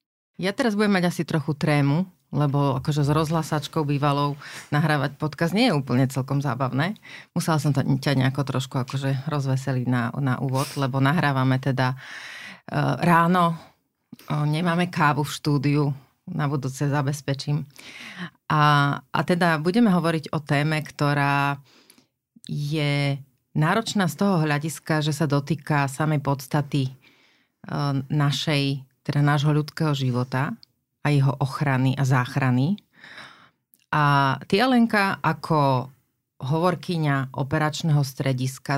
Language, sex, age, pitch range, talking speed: Slovak, female, 30-49, 135-155 Hz, 115 wpm